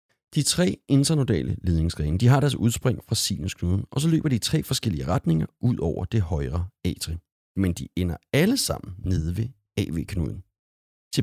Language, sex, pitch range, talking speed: Danish, male, 90-135 Hz, 170 wpm